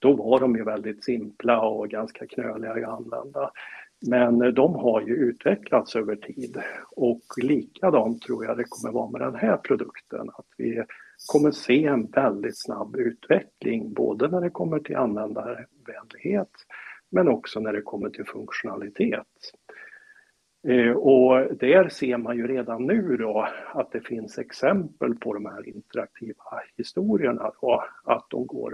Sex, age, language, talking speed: male, 60-79, Swedish, 150 wpm